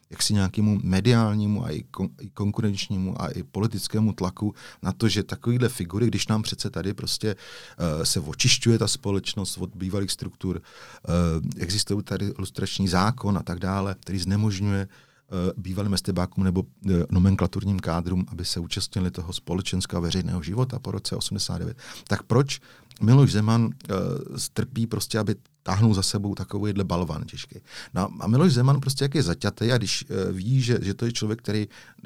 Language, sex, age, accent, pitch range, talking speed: Czech, male, 40-59, native, 95-120 Hz, 150 wpm